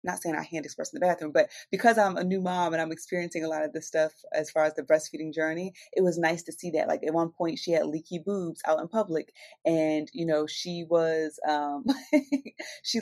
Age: 30-49